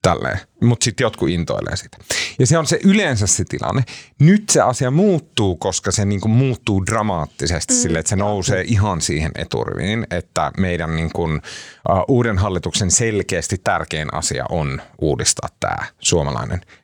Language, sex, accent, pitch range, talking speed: Finnish, male, native, 90-125 Hz, 145 wpm